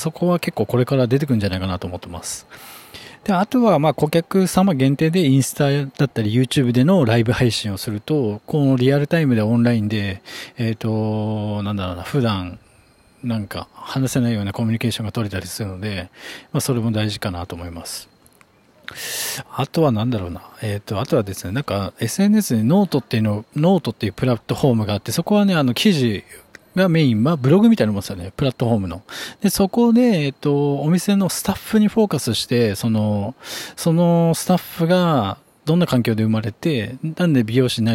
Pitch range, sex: 110-160 Hz, male